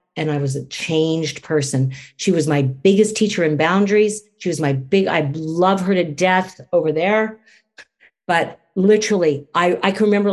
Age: 50-69